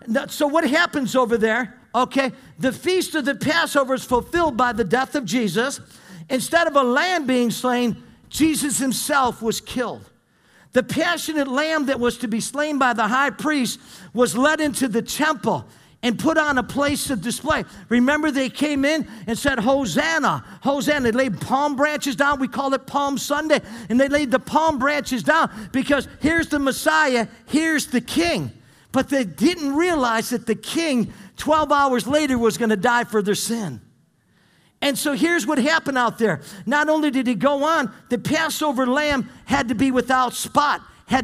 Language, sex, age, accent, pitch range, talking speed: English, male, 50-69, American, 230-290 Hz, 180 wpm